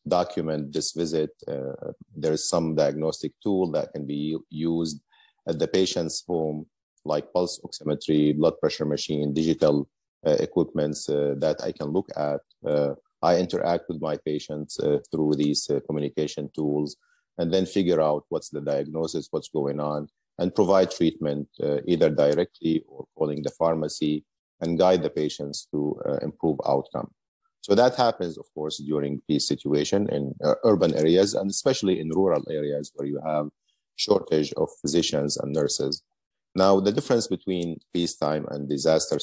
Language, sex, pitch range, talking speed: English, male, 75-90 Hz, 160 wpm